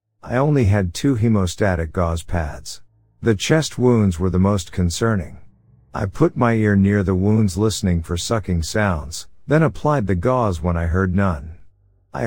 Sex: male